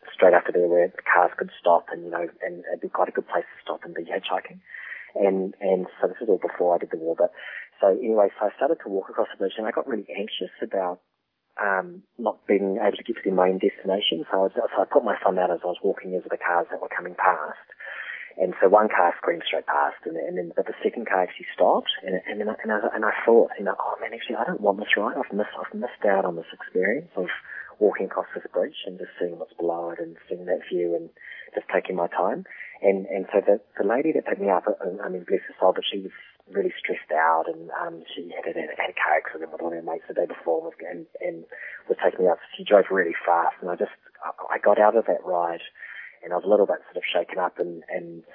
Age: 30-49